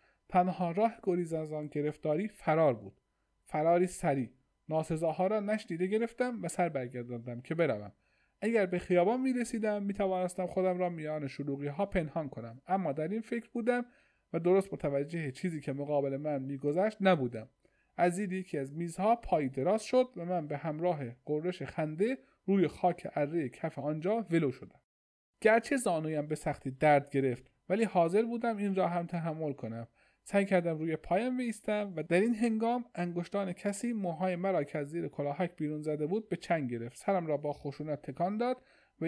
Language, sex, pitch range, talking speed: Persian, male, 145-200 Hz, 165 wpm